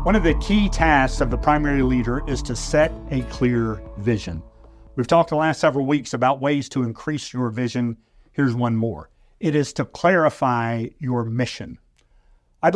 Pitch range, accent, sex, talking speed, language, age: 120-150 Hz, American, male, 175 wpm, English, 50-69